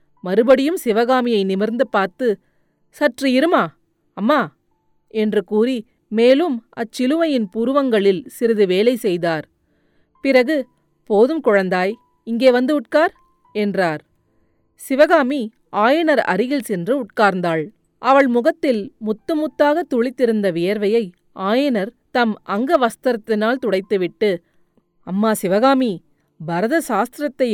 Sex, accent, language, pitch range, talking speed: female, native, Tamil, 195-265 Hz, 85 wpm